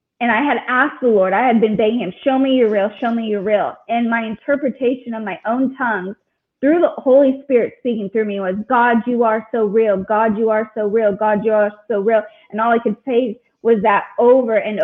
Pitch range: 210-255 Hz